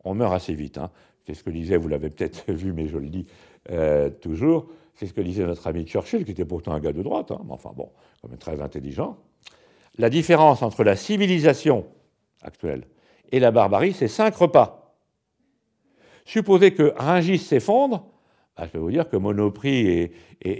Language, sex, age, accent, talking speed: French, male, 60-79, French, 190 wpm